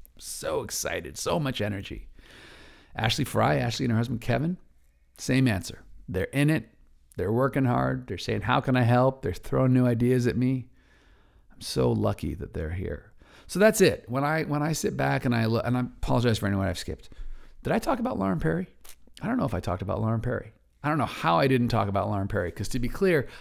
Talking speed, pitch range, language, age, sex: 220 wpm, 90-125 Hz, English, 50-69, male